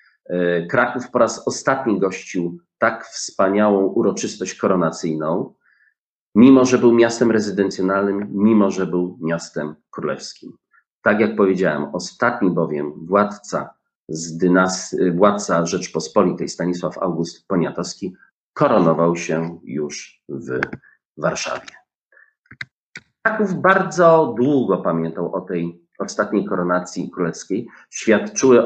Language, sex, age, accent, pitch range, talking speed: Polish, male, 40-59, native, 90-110 Hz, 95 wpm